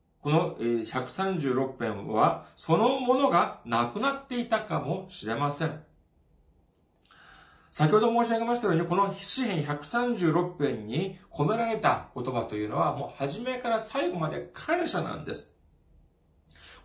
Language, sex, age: Japanese, male, 40-59